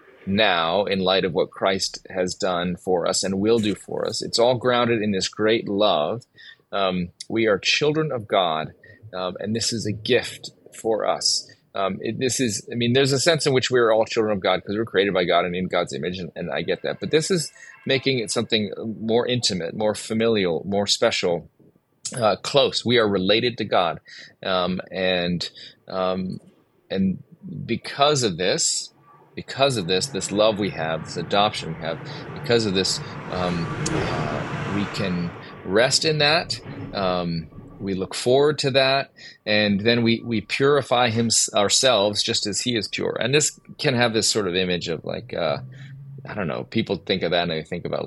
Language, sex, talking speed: English, male, 190 wpm